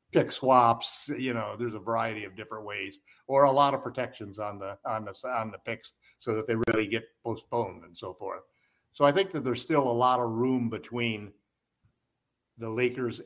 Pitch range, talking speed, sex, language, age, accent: 110-135 Hz, 200 wpm, male, English, 50-69, American